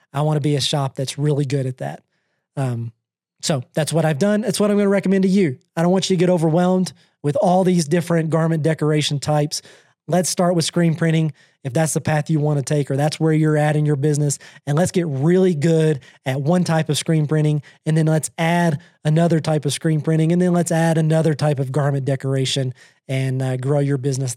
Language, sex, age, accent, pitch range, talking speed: English, male, 30-49, American, 145-175 Hz, 230 wpm